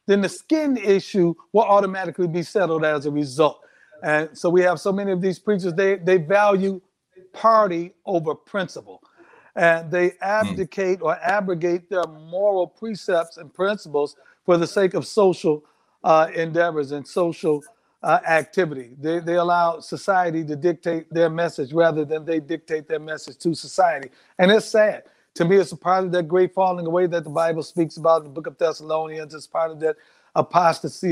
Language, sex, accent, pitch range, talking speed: English, male, American, 160-195 Hz, 175 wpm